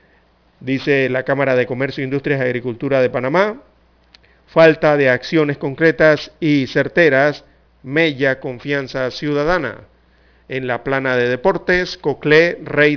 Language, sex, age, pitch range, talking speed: Spanish, male, 50-69, 125-150 Hz, 120 wpm